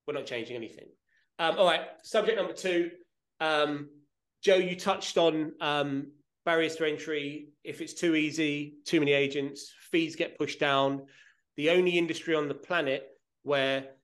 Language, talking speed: English, 160 wpm